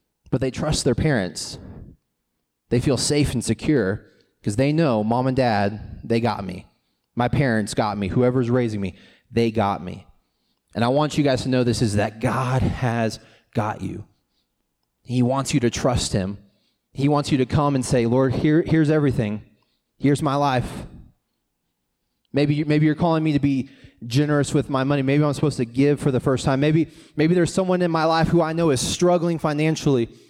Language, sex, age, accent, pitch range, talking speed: English, male, 20-39, American, 125-160 Hz, 190 wpm